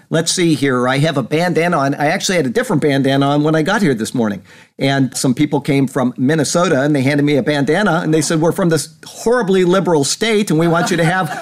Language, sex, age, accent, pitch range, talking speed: English, male, 50-69, American, 130-170 Hz, 250 wpm